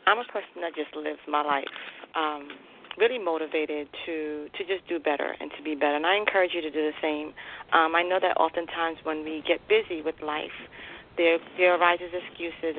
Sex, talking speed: female, 200 wpm